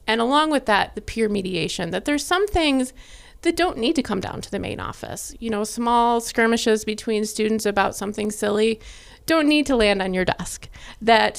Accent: American